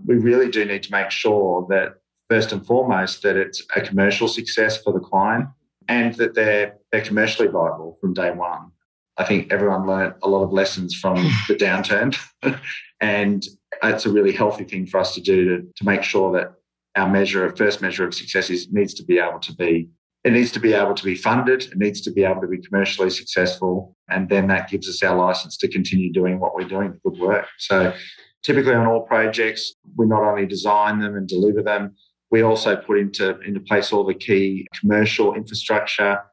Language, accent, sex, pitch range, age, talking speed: English, Australian, male, 95-110 Hz, 40-59, 205 wpm